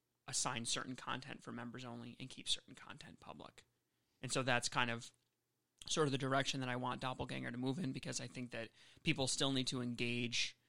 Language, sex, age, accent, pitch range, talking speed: English, male, 30-49, American, 115-130 Hz, 200 wpm